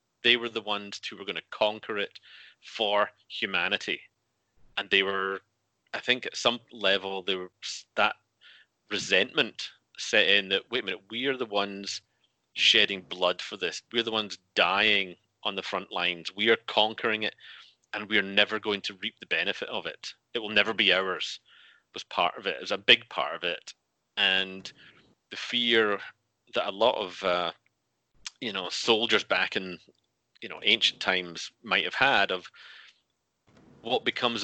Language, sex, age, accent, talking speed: English, male, 30-49, British, 175 wpm